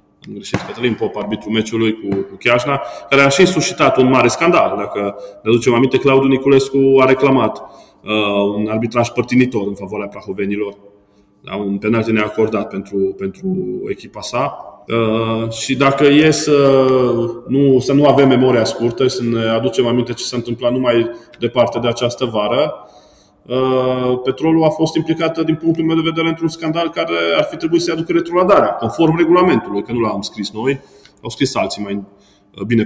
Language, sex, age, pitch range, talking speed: Romanian, male, 20-39, 105-135 Hz, 170 wpm